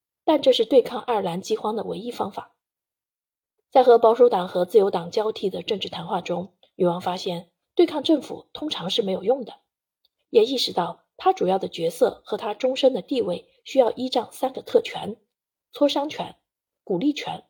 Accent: native